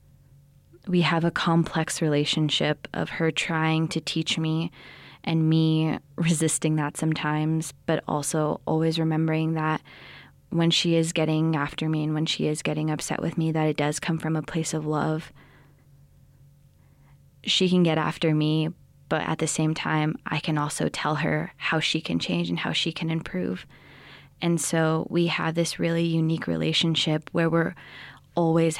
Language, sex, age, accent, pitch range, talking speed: English, female, 20-39, American, 150-170 Hz, 165 wpm